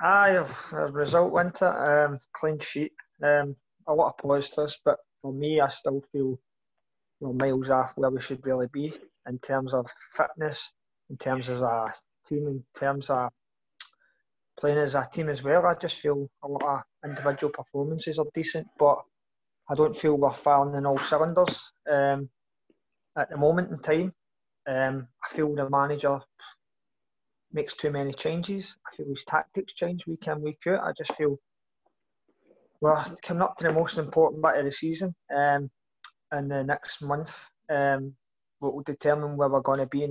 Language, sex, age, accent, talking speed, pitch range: English, male, 20-39, British, 175 wpm, 135-155 Hz